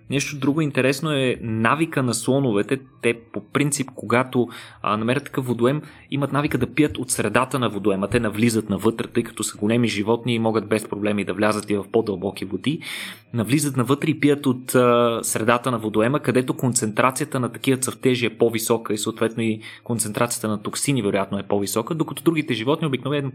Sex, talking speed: male, 180 wpm